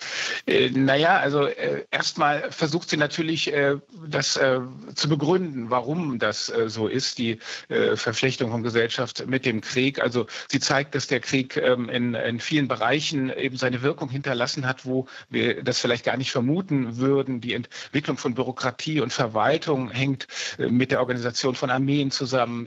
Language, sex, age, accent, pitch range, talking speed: German, male, 50-69, German, 125-140 Hz, 170 wpm